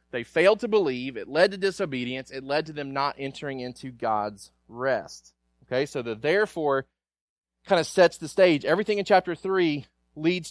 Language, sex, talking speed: English, male, 175 wpm